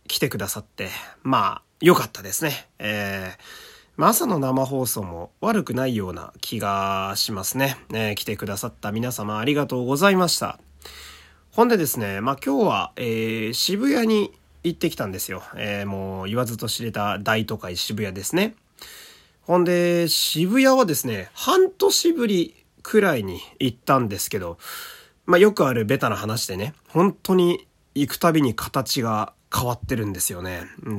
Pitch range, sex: 105-175 Hz, male